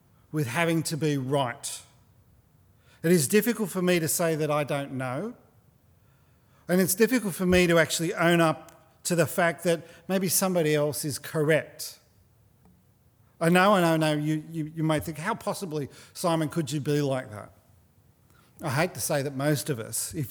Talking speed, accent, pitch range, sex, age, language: 185 wpm, Australian, 120-160 Hz, male, 40-59, English